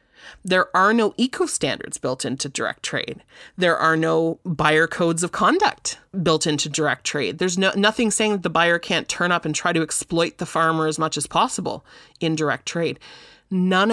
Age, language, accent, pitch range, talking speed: 30-49, English, American, 165-215 Hz, 190 wpm